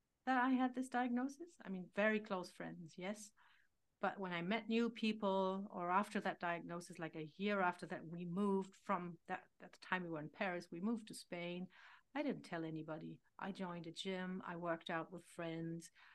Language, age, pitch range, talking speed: English, 60-79, 170-220 Hz, 200 wpm